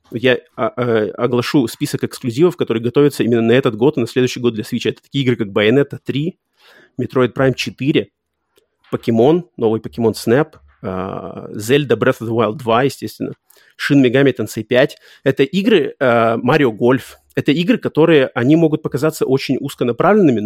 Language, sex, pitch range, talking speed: Russian, male, 120-145 Hz, 155 wpm